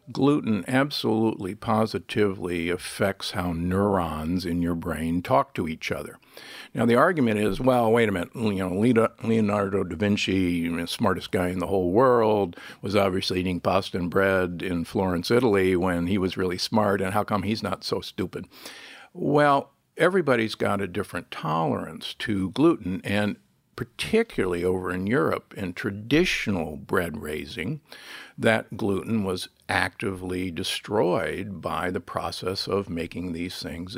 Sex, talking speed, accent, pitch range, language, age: male, 150 wpm, American, 90-110 Hz, English, 50-69